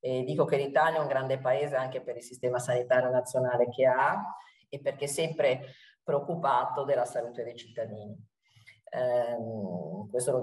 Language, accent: Italian, native